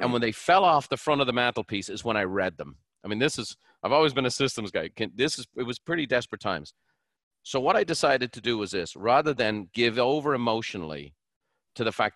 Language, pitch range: English, 100-130 Hz